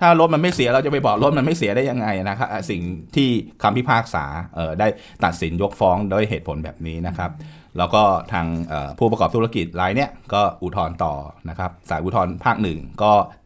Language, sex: Thai, male